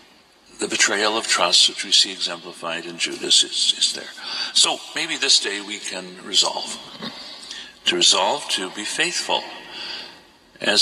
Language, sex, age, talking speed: English, male, 60-79, 145 wpm